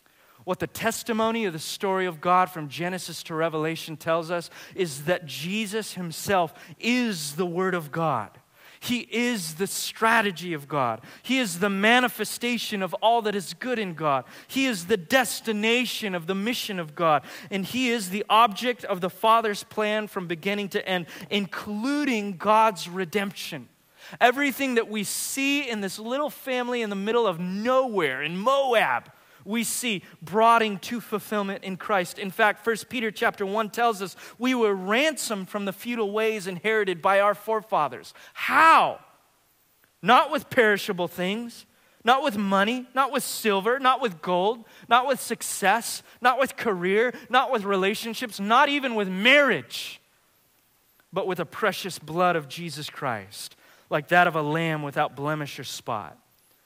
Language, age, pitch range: English, 30-49, 180-235 Hz